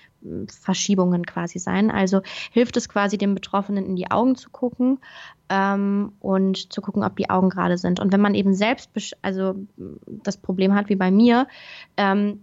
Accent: German